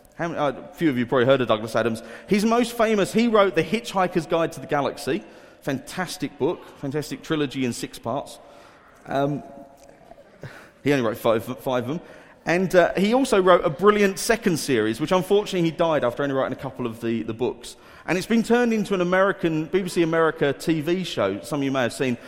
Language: English